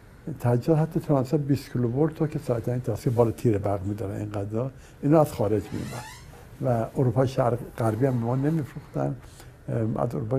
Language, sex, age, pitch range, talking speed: Persian, male, 60-79, 110-135 Hz, 105 wpm